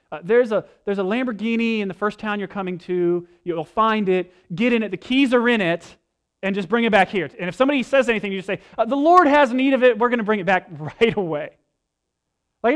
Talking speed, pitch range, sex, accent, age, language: 255 wpm, 150-225 Hz, male, American, 30-49, English